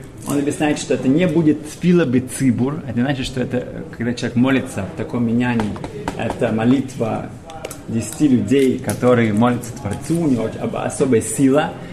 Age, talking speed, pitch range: 30-49, 150 wpm, 110-135 Hz